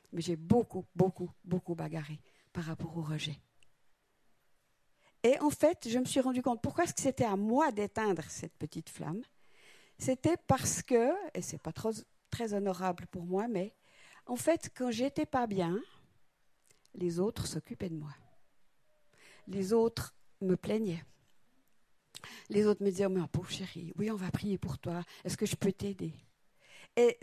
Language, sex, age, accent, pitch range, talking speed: French, female, 50-69, French, 170-230 Hz, 165 wpm